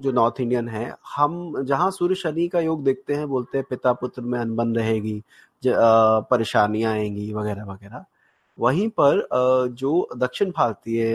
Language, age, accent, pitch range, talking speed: Hindi, 30-49, native, 115-150 Hz, 155 wpm